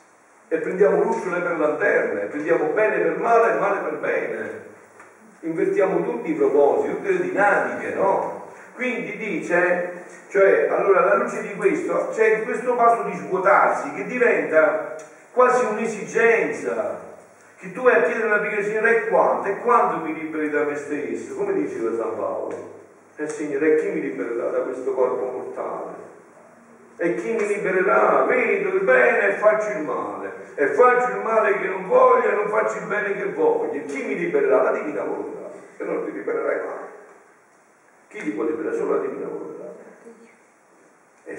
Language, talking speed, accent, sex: Italian, 165 wpm, native, male